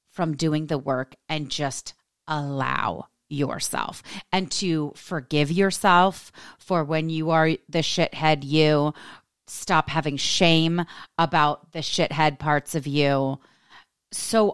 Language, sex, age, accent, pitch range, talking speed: English, female, 30-49, American, 150-200 Hz, 120 wpm